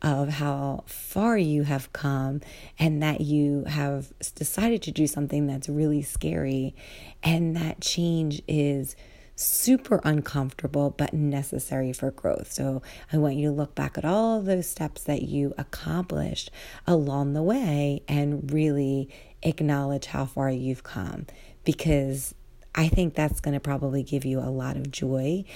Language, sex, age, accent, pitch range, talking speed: English, female, 30-49, American, 140-160 Hz, 155 wpm